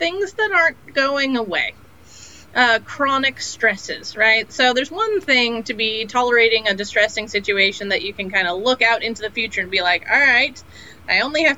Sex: female